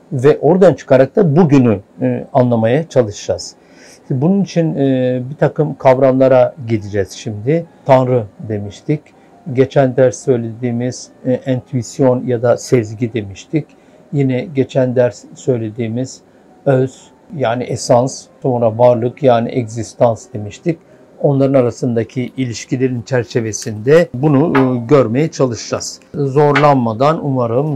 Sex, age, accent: male, 60-79, native